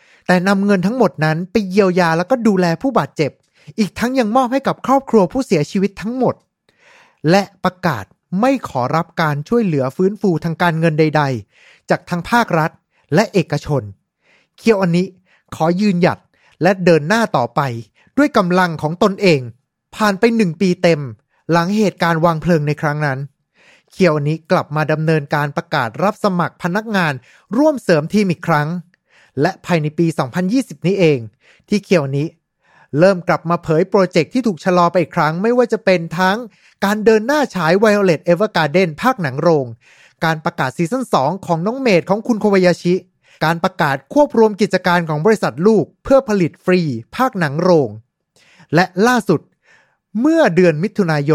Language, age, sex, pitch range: Thai, 30-49, male, 155-210 Hz